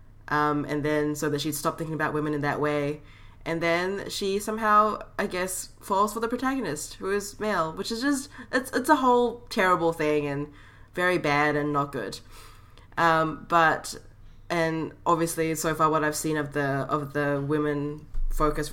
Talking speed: 180 wpm